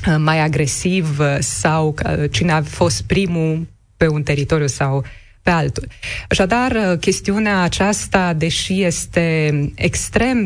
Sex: female